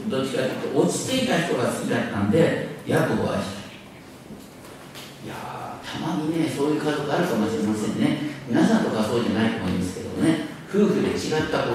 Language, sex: Japanese, male